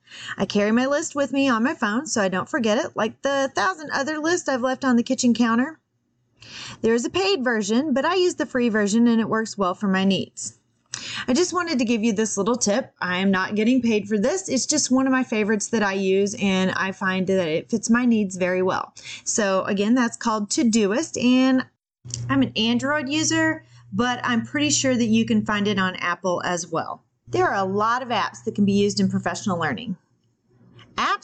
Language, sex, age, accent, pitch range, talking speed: English, female, 30-49, American, 200-260 Hz, 220 wpm